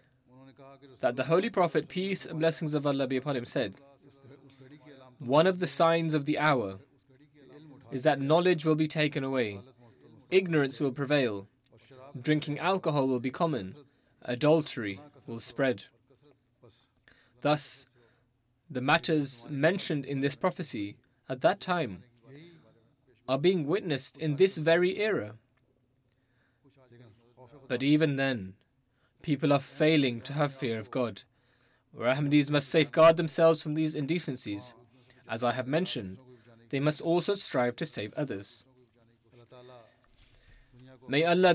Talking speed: 125 wpm